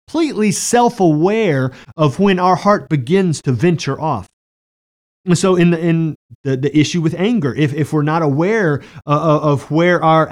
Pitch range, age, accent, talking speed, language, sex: 130-180 Hz, 30-49, American, 165 wpm, English, male